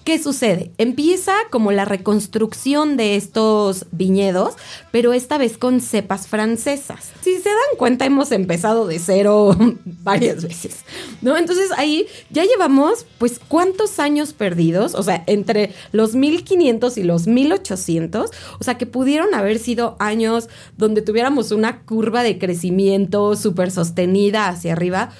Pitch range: 185-270 Hz